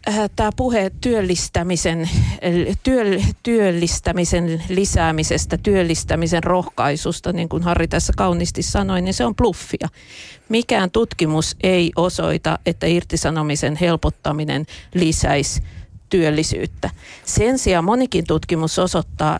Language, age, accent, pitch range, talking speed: Finnish, 50-69, native, 160-185 Hz, 100 wpm